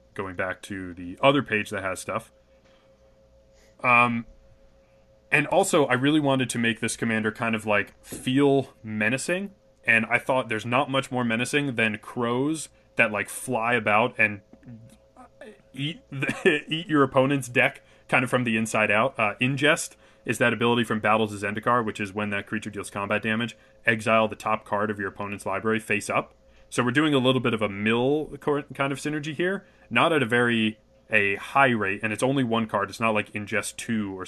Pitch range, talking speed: 105-130 Hz, 190 wpm